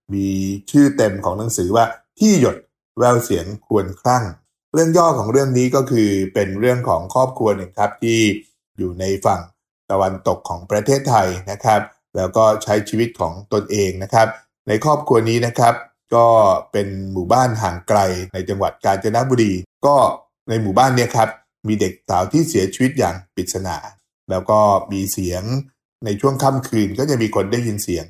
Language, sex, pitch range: English, male, 100-120 Hz